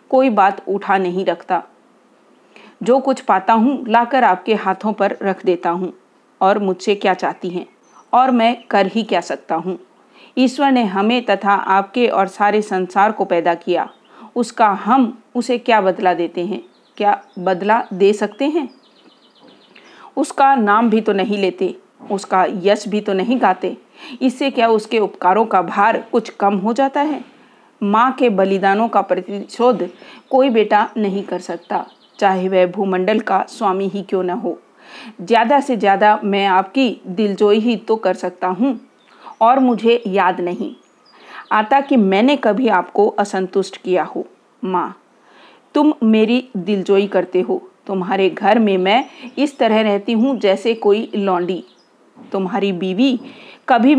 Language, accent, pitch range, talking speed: Hindi, native, 190-240 Hz, 150 wpm